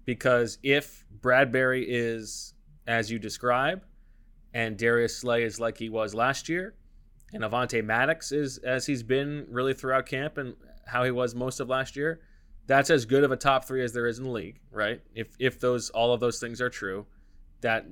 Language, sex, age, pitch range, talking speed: English, male, 20-39, 110-130 Hz, 195 wpm